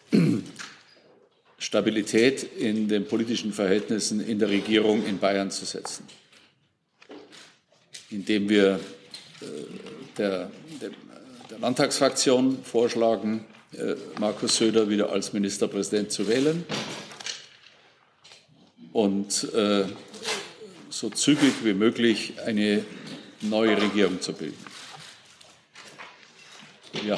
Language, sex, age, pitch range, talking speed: German, male, 50-69, 100-115 Hz, 80 wpm